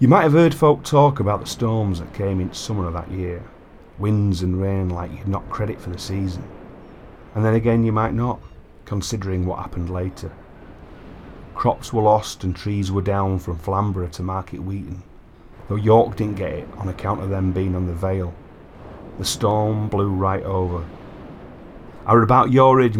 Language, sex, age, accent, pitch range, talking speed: English, male, 40-59, British, 90-110 Hz, 185 wpm